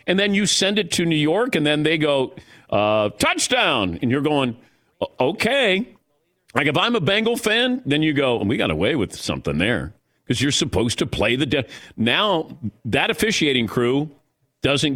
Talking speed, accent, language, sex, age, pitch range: 190 wpm, American, English, male, 50-69, 145-220 Hz